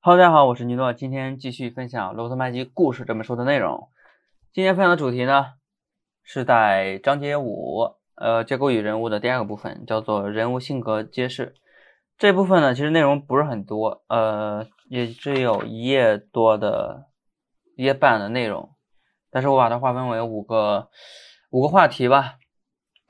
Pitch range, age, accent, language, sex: 115-140 Hz, 20-39, native, Chinese, male